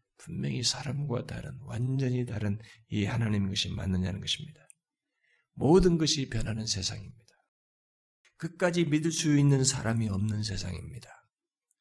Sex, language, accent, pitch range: male, Korean, native, 110-170 Hz